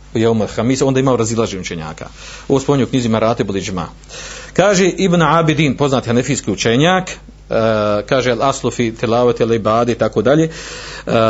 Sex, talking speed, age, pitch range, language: male, 155 wpm, 40-59, 120-155 Hz, Croatian